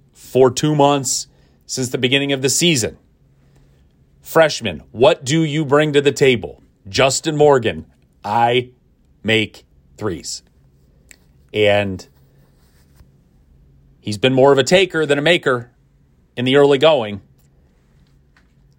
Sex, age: male, 40-59